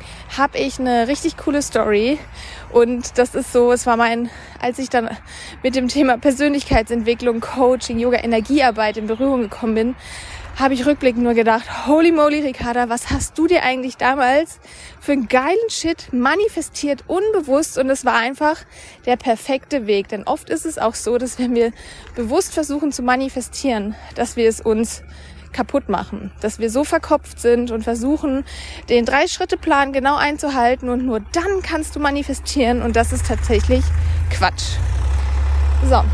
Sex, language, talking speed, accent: female, German, 165 wpm, German